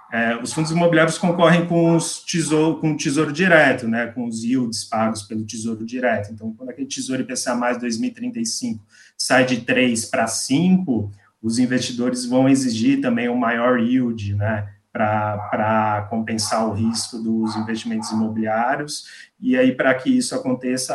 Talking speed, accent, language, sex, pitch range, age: 145 wpm, Brazilian, English, male, 110-150 Hz, 20-39